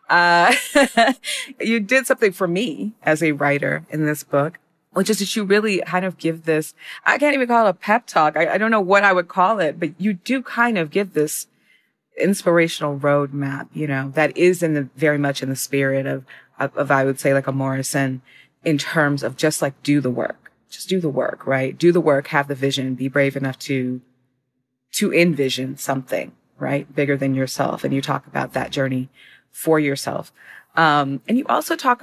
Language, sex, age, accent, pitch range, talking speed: English, female, 30-49, American, 135-175 Hz, 205 wpm